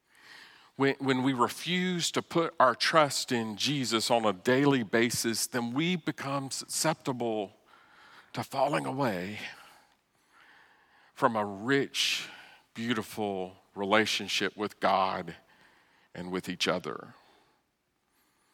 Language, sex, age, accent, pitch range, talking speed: English, male, 50-69, American, 105-135 Hz, 100 wpm